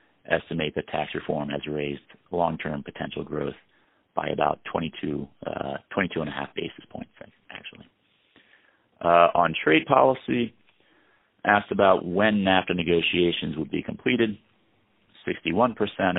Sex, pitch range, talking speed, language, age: male, 80-100 Hz, 115 wpm, English, 40-59